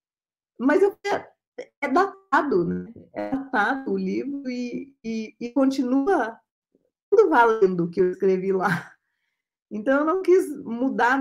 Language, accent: Portuguese, Brazilian